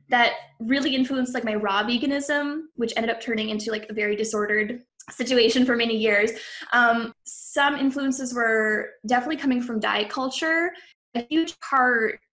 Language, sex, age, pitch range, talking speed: English, female, 10-29, 215-255 Hz, 155 wpm